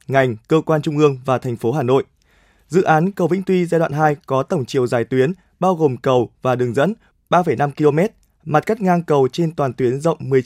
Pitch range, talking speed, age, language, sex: 130-175 Hz, 225 wpm, 20-39, Vietnamese, male